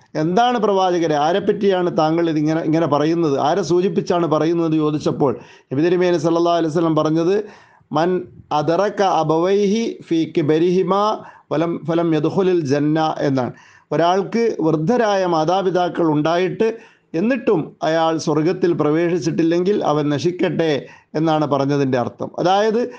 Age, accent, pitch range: 30-49, native, 150-185 Hz